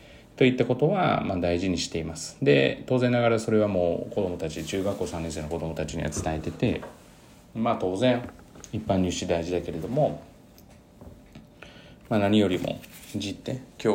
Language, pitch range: Japanese, 85-110 Hz